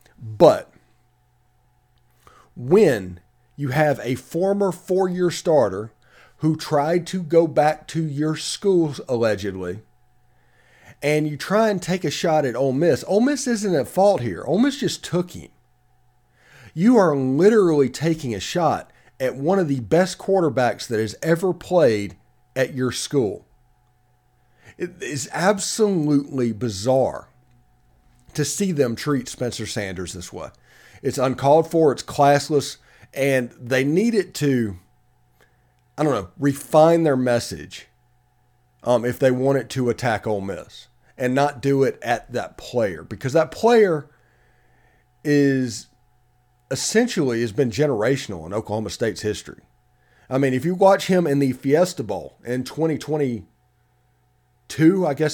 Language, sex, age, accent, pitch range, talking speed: English, male, 40-59, American, 120-160 Hz, 140 wpm